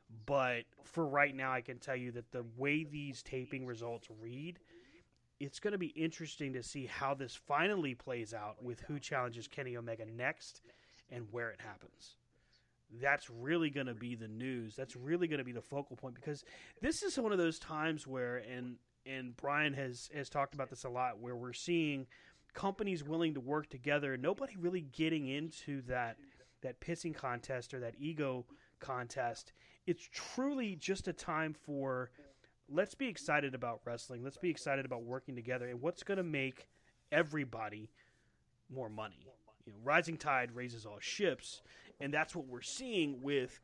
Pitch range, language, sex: 120-155 Hz, English, male